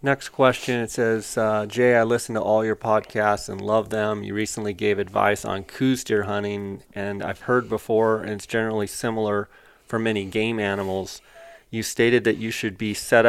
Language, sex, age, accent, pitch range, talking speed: English, male, 30-49, American, 100-115 Hz, 190 wpm